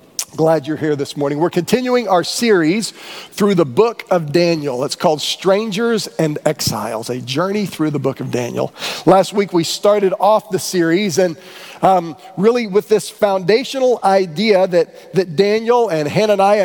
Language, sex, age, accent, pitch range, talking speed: English, male, 40-59, American, 165-200 Hz, 160 wpm